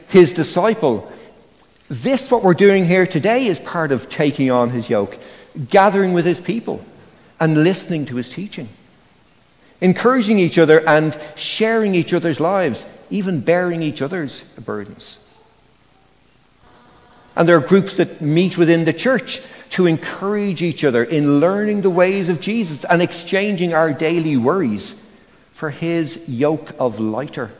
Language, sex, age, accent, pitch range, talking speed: English, male, 60-79, Irish, 150-200 Hz, 145 wpm